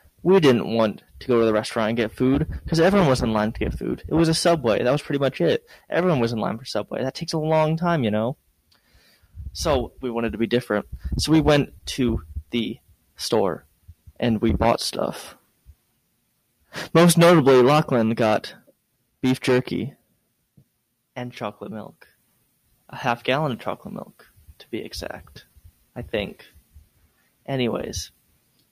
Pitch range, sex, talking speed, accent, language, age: 100-160 Hz, male, 165 wpm, American, English, 20-39